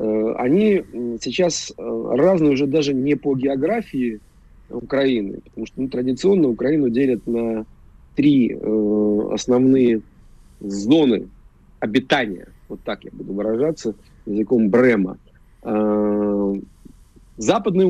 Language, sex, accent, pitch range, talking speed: Russian, male, native, 105-145 Hz, 100 wpm